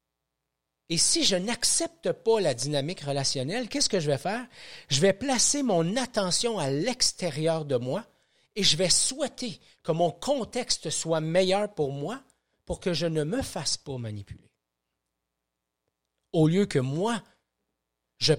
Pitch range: 135-205 Hz